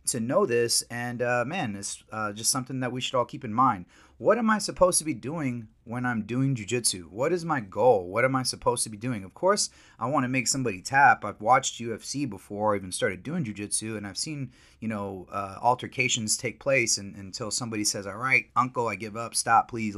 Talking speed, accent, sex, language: 230 wpm, American, male, English